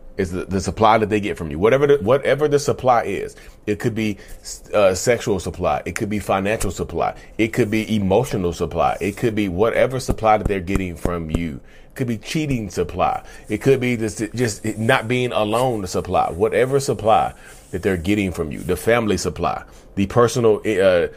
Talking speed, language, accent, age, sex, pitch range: 195 wpm, English, American, 30-49, male, 95-115 Hz